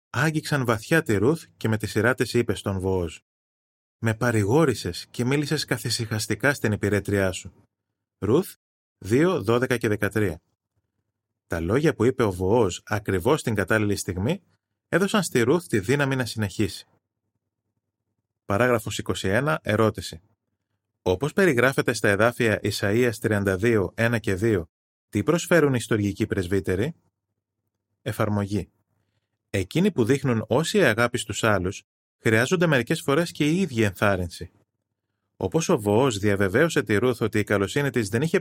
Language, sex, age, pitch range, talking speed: Greek, male, 20-39, 100-125 Hz, 135 wpm